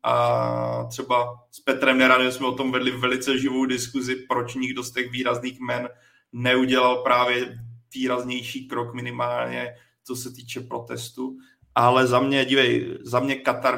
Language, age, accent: Czech, 20-39, native